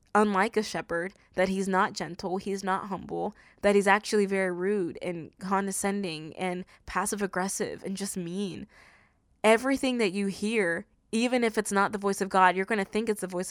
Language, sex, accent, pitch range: English, female, American, 185-215 Hz